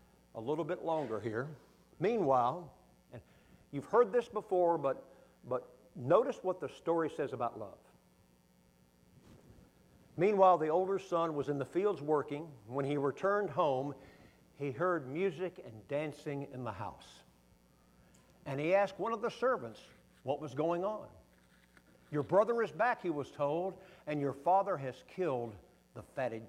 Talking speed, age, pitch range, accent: 150 wpm, 60-79, 125-180 Hz, American